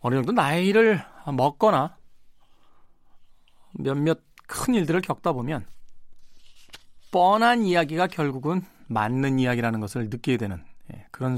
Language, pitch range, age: Korean, 125-180 Hz, 40-59